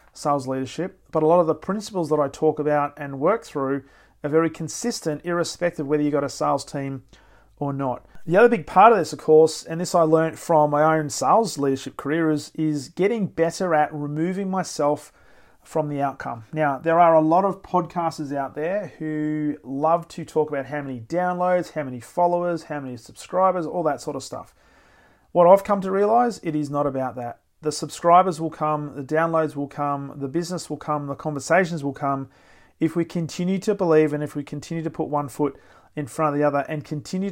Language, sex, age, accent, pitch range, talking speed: English, male, 30-49, Australian, 145-170 Hz, 210 wpm